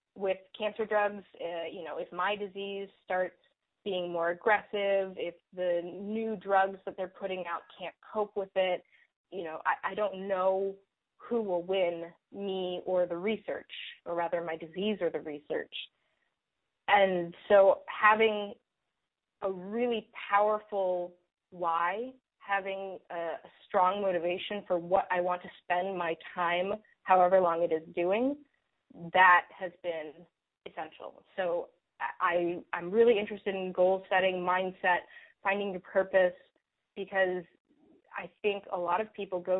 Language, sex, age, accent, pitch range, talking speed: English, female, 20-39, American, 175-205 Hz, 145 wpm